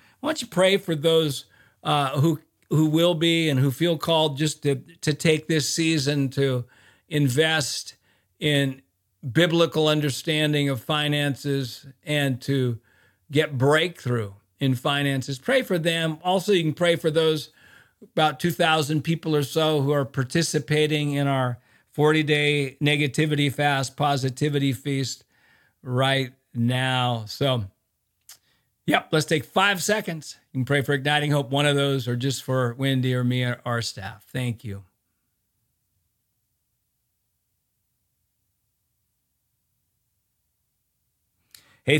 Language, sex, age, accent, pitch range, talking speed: English, male, 50-69, American, 130-160 Hz, 125 wpm